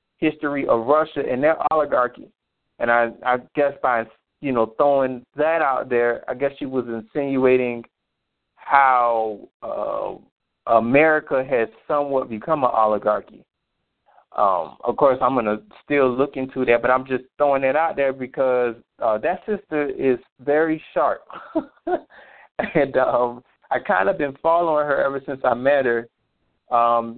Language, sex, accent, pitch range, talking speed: English, male, American, 125-145 Hz, 150 wpm